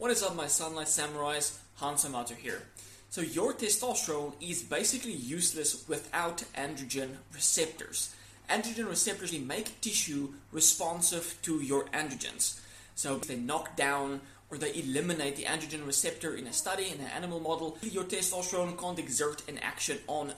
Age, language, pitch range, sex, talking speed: 20-39, English, 140-180 Hz, male, 150 wpm